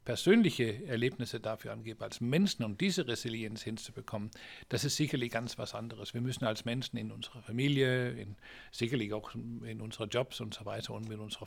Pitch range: 115-140 Hz